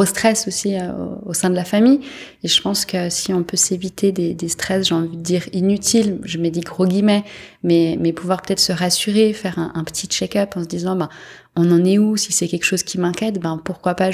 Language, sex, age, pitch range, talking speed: English, female, 20-39, 170-195 Hz, 240 wpm